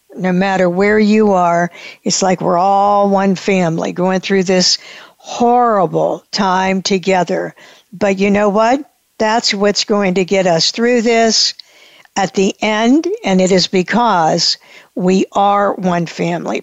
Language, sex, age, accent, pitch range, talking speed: English, female, 60-79, American, 185-220 Hz, 145 wpm